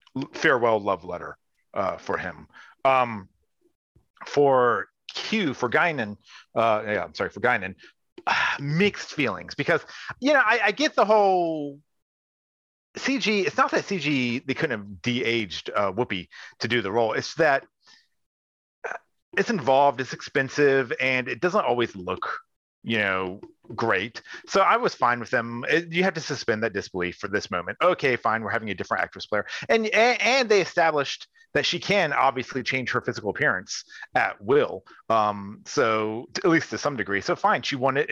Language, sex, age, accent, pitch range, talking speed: English, male, 40-59, American, 110-165 Hz, 165 wpm